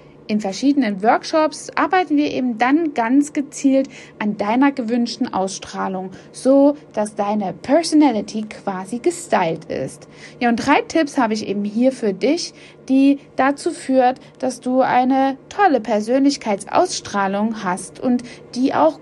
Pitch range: 215-275 Hz